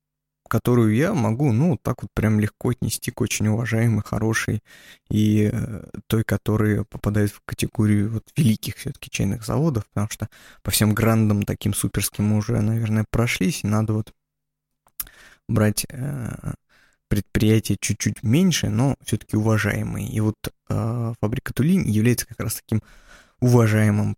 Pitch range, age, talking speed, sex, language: 105-125 Hz, 20-39, 145 wpm, male, Russian